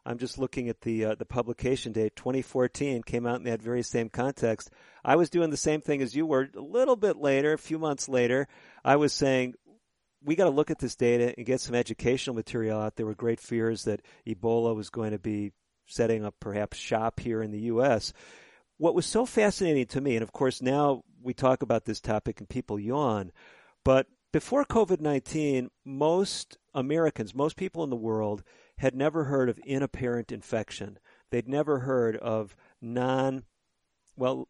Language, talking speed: English, 190 wpm